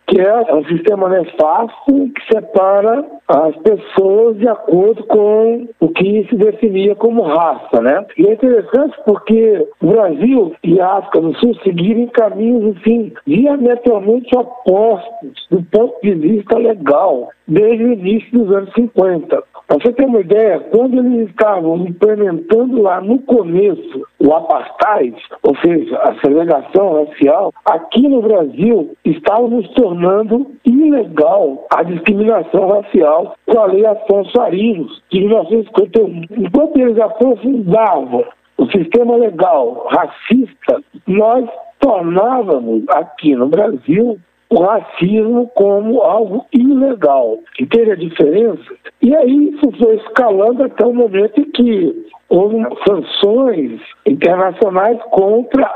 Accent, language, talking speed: Brazilian, Portuguese, 125 wpm